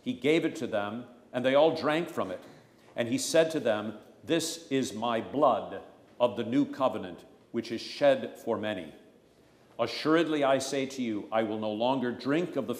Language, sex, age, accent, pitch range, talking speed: English, male, 50-69, American, 105-140 Hz, 190 wpm